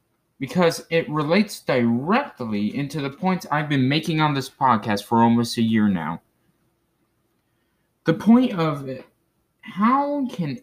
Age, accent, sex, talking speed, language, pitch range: 20-39, American, male, 130 wpm, English, 130-195 Hz